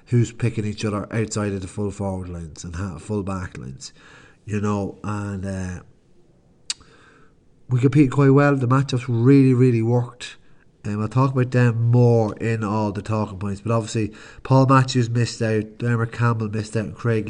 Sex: male